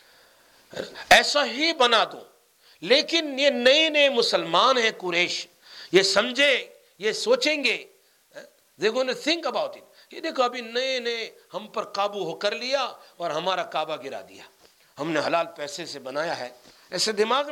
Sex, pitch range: male, 200-310 Hz